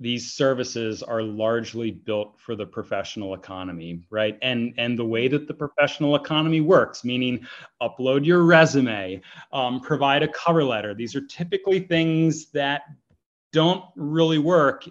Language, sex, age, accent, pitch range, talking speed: English, male, 30-49, American, 120-145 Hz, 145 wpm